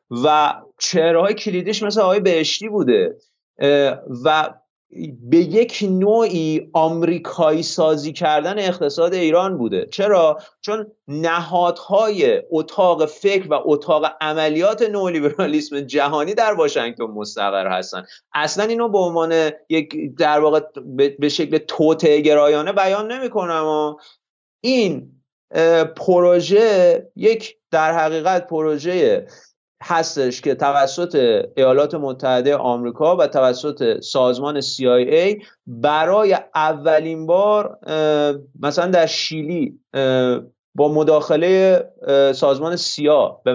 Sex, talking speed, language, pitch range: male, 100 wpm, Persian, 145-195 Hz